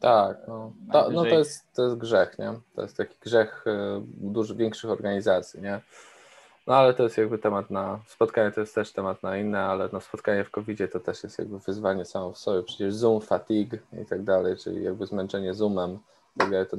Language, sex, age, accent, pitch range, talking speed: Polish, male, 20-39, native, 100-115 Hz, 205 wpm